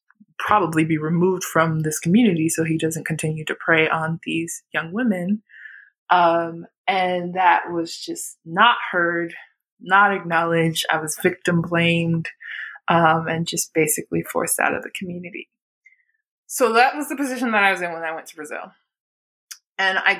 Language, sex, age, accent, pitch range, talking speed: English, female, 20-39, American, 165-200 Hz, 160 wpm